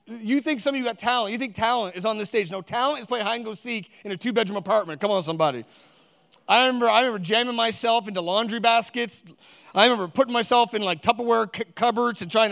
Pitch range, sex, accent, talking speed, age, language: 195-235 Hz, male, American, 220 wpm, 30-49, English